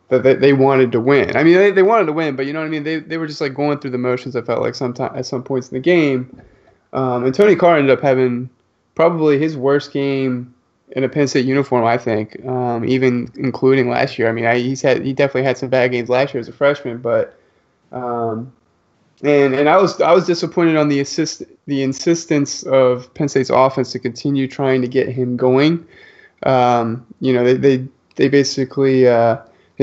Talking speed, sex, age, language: 220 wpm, male, 20-39, English